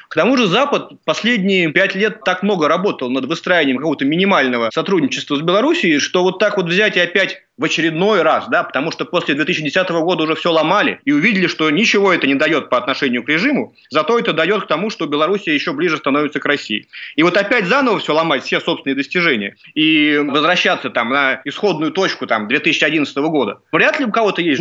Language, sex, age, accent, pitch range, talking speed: Russian, male, 30-49, native, 155-205 Hz, 200 wpm